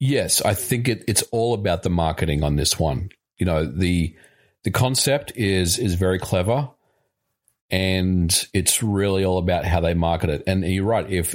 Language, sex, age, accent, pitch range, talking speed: English, male, 40-59, Australian, 90-115 Hz, 175 wpm